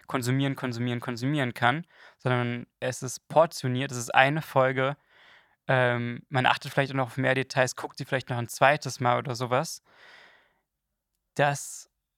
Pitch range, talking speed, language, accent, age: 125-140 Hz, 155 wpm, German, German, 20-39